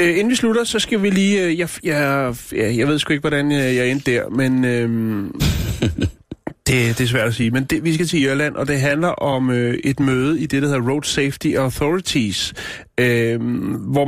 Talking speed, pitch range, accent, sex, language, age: 195 wpm, 130-170 Hz, native, male, Danish, 30-49